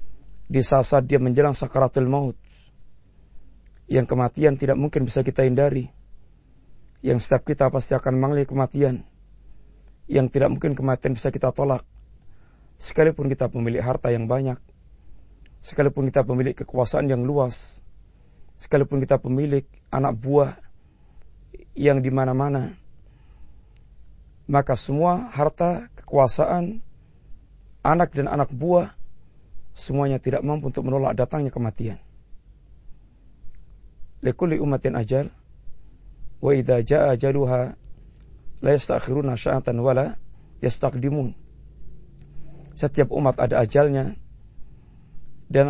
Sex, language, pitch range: male, Malay, 120-140 Hz